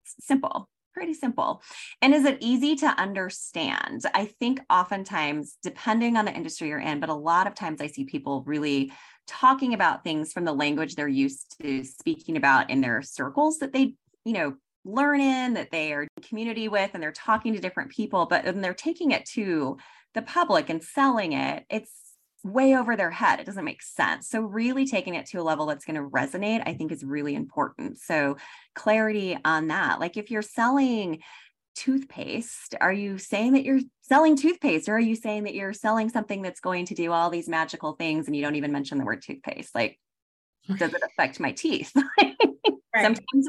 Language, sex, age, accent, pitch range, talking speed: English, female, 20-39, American, 170-270 Hz, 195 wpm